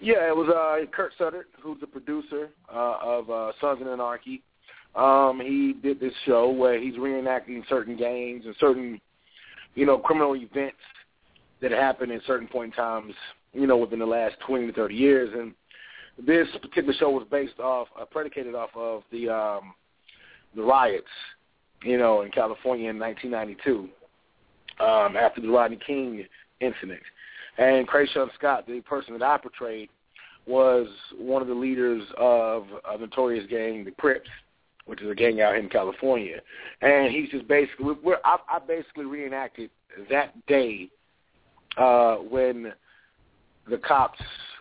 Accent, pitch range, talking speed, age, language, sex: American, 115-135 Hz, 155 wpm, 30-49, English, male